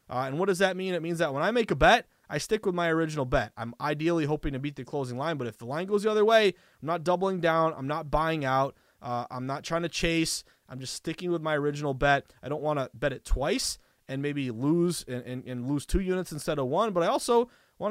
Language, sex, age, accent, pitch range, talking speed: English, male, 20-39, American, 130-175 Hz, 270 wpm